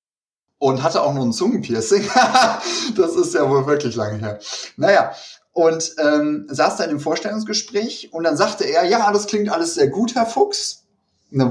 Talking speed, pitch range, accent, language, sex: 175 wpm, 110-150 Hz, German, German, male